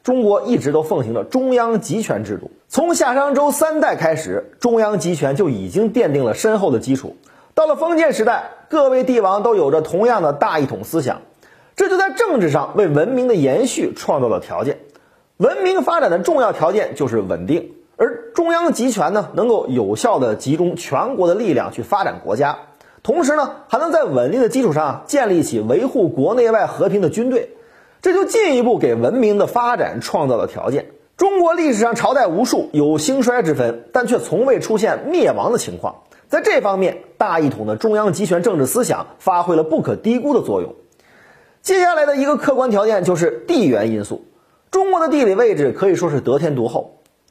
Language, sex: Chinese, male